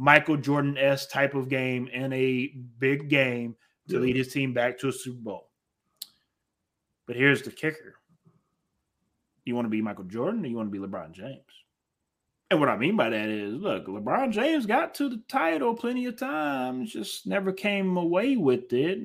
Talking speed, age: 185 wpm, 20-39